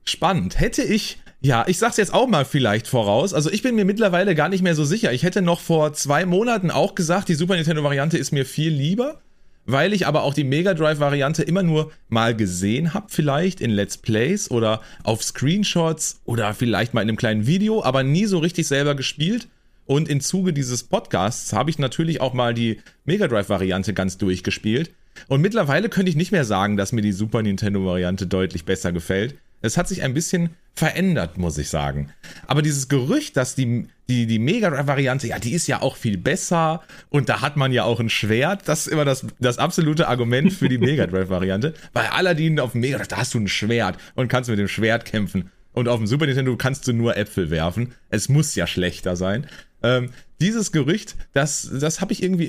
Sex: male